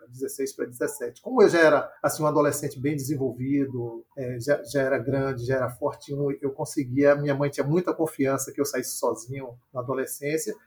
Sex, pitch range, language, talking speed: male, 135-165 Hz, Portuguese, 175 wpm